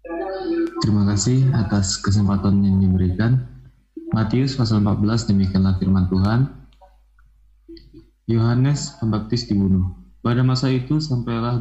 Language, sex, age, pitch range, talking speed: Indonesian, male, 20-39, 100-125 Hz, 100 wpm